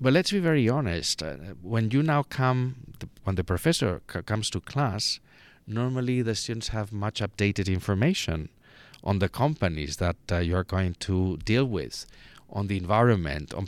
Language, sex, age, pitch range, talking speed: Italian, male, 40-59, 95-120 Hz, 170 wpm